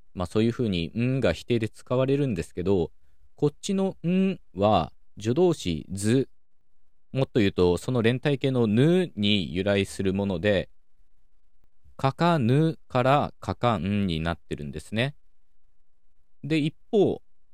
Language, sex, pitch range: Japanese, male, 85-125 Hz